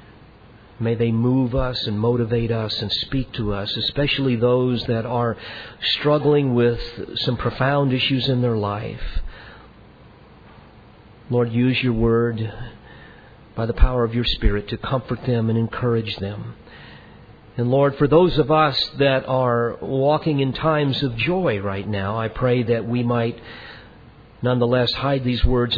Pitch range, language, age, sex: 110-130 Hz, English, 50-69, male